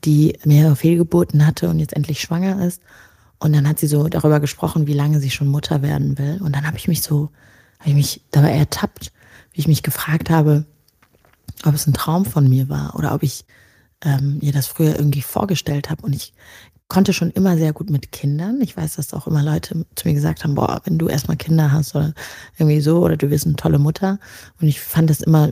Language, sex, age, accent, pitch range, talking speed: German, female, 20-39, German, 140-160 Hz, 225 wpm